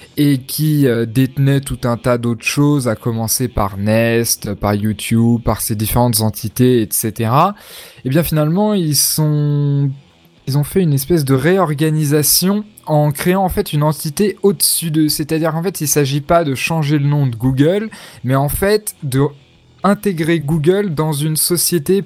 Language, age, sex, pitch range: French, 20-39, male, 115-155 Hz